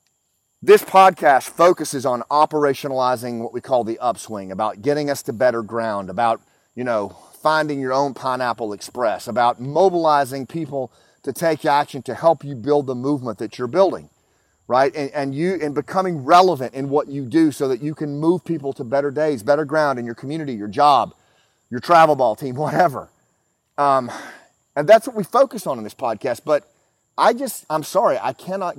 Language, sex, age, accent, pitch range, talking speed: English, male, 30-49, American, 130-165 Hz, 185 wpm